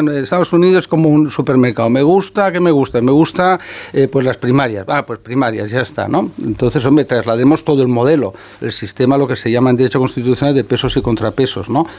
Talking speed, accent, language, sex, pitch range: 215 wpm, Spanish, Spanish, male, 115-145 Hz